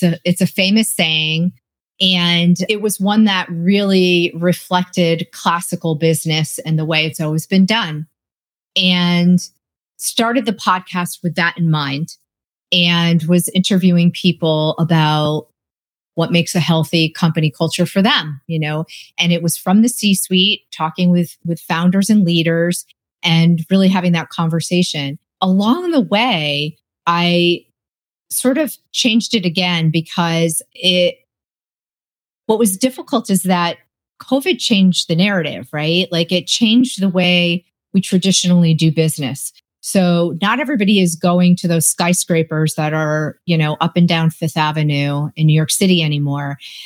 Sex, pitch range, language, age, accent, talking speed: female, 160-190 Hz, English, 30-49, American, 145 wpm